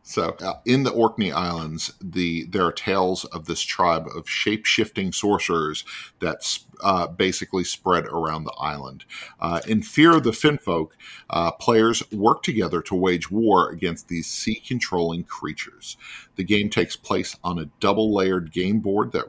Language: English